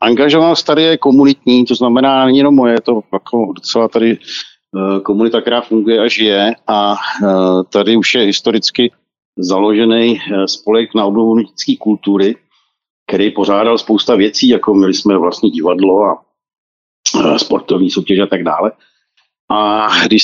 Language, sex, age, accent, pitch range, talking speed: Czech, male, 50-69, native, 105-135 Hz, 140 wpm